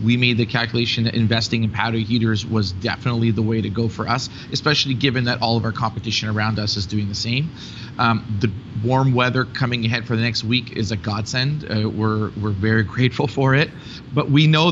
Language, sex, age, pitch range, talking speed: English, male, 30-49, 115-130 Hz, 215 wpm